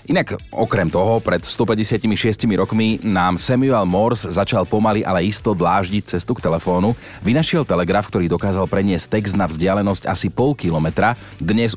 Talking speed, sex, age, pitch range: 150 wpm, male, 30-49, 90-115 Hz